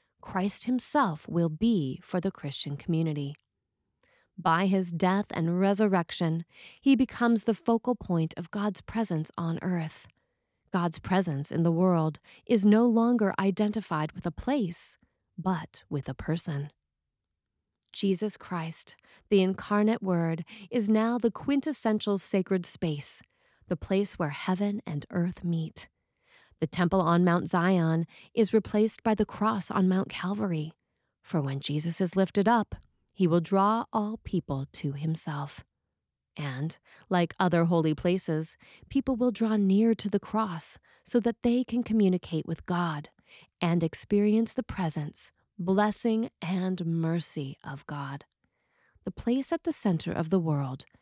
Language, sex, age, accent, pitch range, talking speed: English, female, 30-49, American, 160-210 Hz, 140 wpm